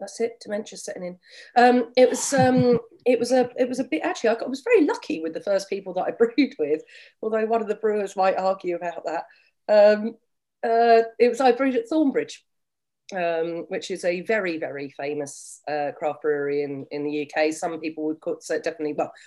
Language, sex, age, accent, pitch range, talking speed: English, female, 40-59, British, 150-190 Hz, 215 wpm